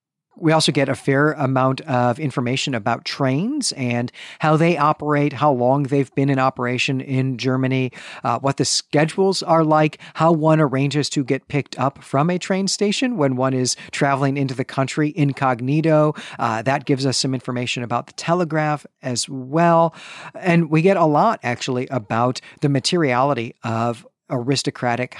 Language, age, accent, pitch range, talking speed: English, 40-59, American, 125-150 Hz, 165 wpm